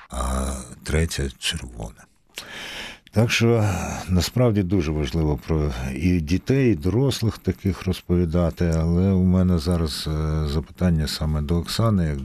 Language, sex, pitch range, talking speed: Ukrainian, male, 75-95 Hz, 125 wpm